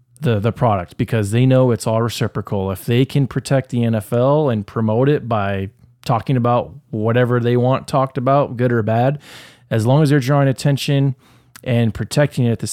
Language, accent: English, American